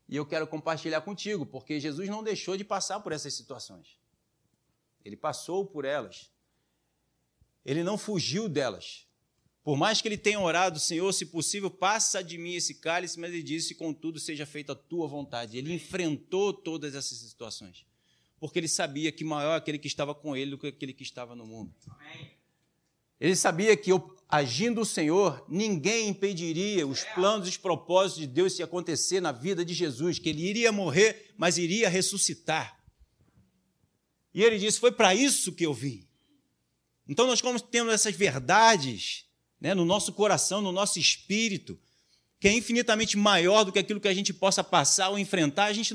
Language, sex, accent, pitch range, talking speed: Portuguese, male, Brazilian, 150-210 Hz, 170 wpm